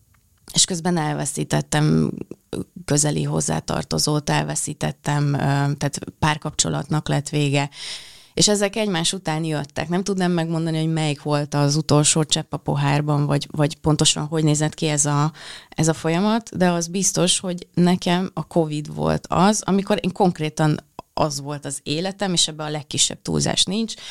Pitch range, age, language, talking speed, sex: 145-175 Hz, 30-49, Hungarian, 145 wpm, female